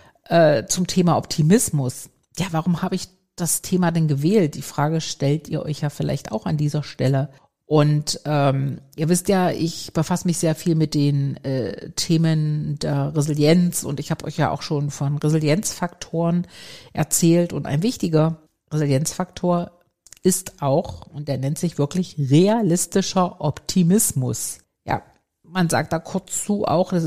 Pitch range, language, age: 145-180 Hz, German, 50-69